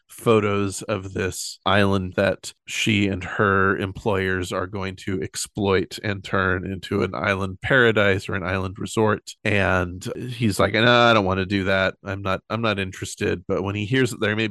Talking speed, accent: 185 wpm, American